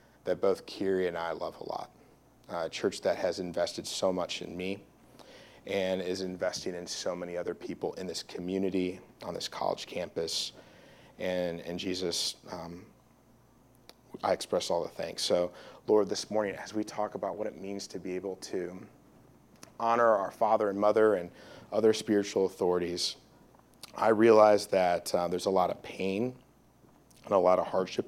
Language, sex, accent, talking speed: English, male, American, 170 wpm